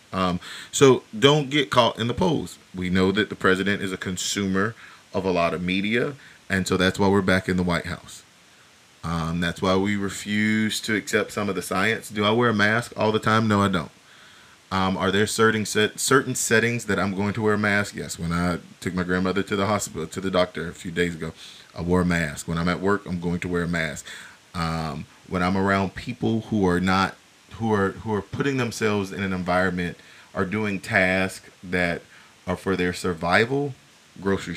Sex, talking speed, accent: male, 215 wpm, American